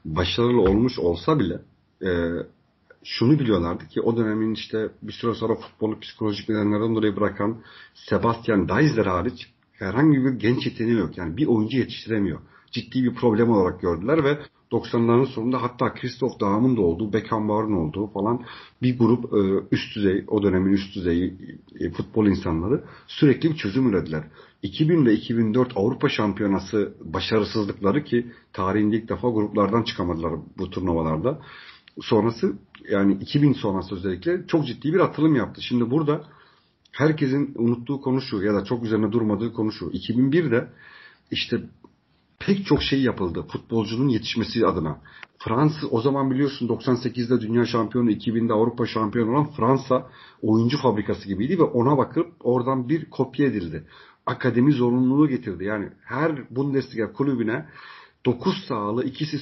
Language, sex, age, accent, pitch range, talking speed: Turkish, male, 50-69, native, 105-135 Hz, 140 wpm